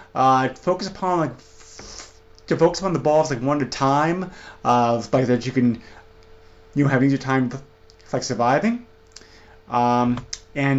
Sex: male